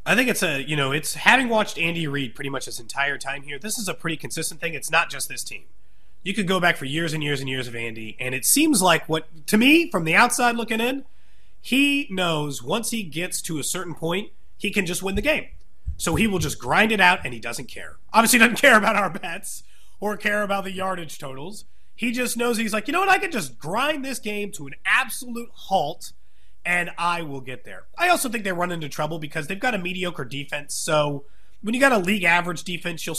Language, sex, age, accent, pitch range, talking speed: English, male, 30-49, American, 155-235 Hz, 245 wpm